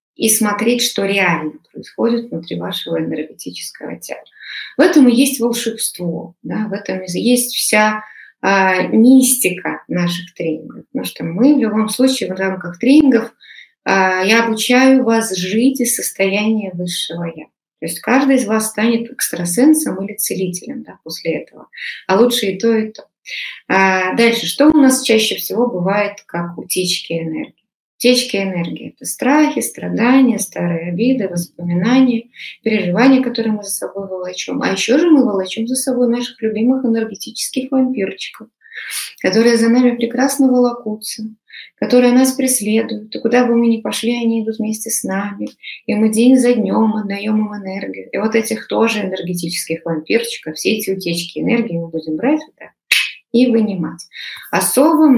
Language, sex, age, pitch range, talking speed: Russian, female, 20-39, 190-245 Hz, 150 wpm